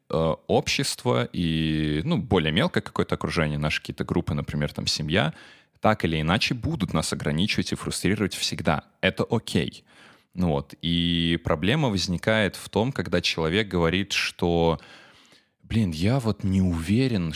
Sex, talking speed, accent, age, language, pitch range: male, 140 wpm, native, 20-39, Russian, 80-100 Hz